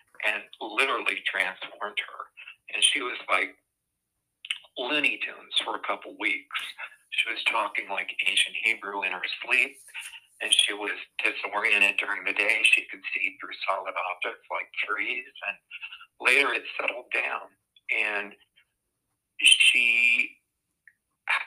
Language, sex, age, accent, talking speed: English, male, 50-69, American, 130 wpm